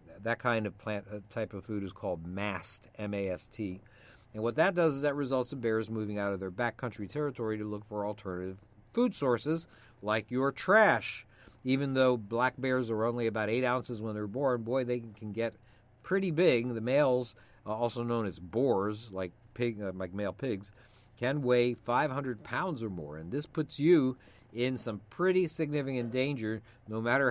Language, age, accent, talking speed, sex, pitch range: English, 50-69, American, 175 wpm, male, 105-130 Hz